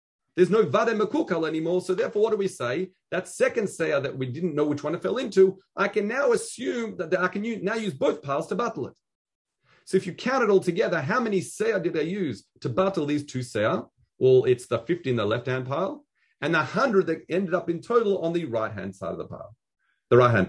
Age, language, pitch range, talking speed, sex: 40-59, English, 150-200 Hz, 235 wpm, male